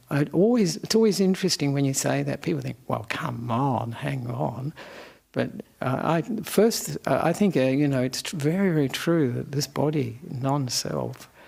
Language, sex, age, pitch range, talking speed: English, male, 60-79, 140-210 Hz, 175 wpm